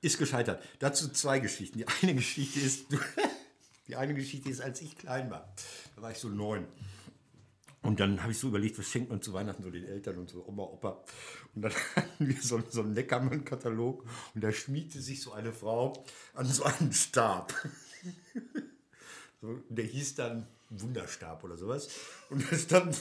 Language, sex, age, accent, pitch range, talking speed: German, male, 60-79, German, 125-175 Hz, 180 wpm